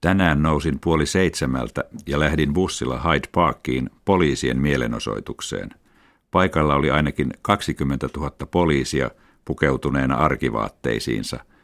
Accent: native